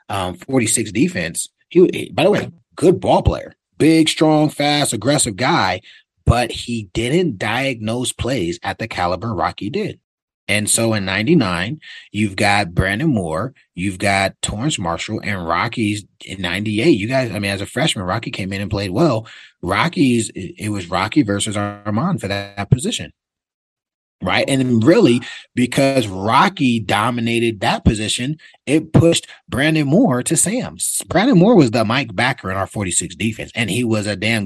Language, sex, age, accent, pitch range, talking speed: English, male, 30-49, American, 100-130 Hz, 160 wpm